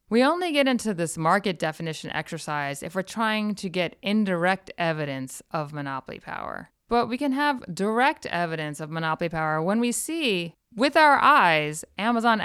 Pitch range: 165-220 Hz